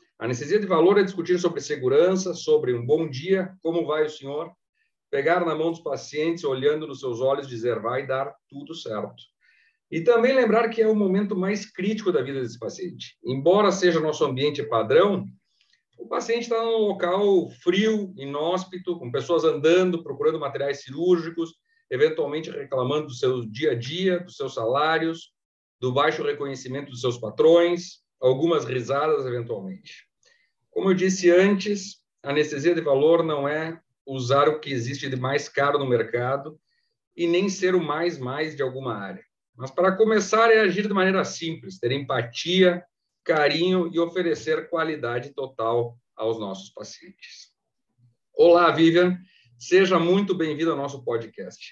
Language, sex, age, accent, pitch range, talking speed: Portuguese, male, 50-69, Brazilian, 140-190 Hz, 155 wpm